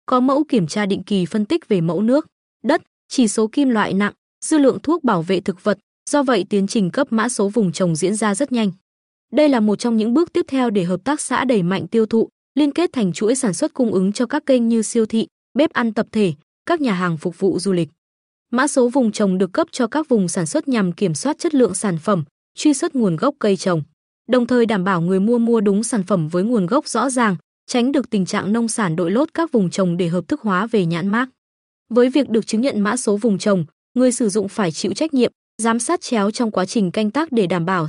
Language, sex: Vietnamese, female